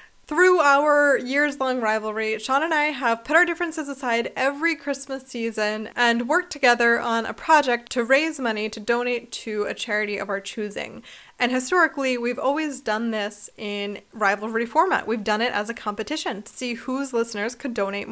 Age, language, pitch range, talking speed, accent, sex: 20-39, English, 220-295 Hz, 175 wpm, American, female